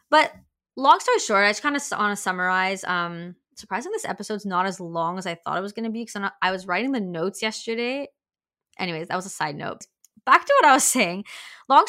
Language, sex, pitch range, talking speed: English, female, 185-215 Hz, 225 wpm